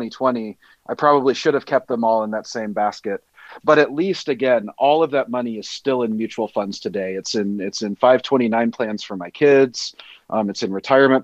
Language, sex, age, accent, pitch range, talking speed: English, male, 30-49, American, 100-125 Hz, 210 wpm